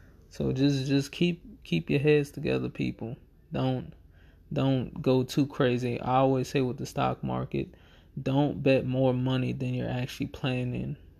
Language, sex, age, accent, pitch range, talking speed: English, male, 20-39, American, 85-140 Hz, 155 wpm